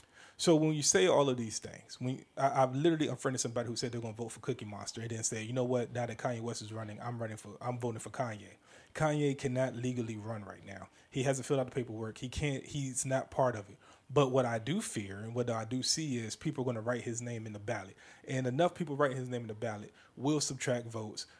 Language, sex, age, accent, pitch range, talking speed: English, male, 20-39, American, 115-130 Hz, 265 wpm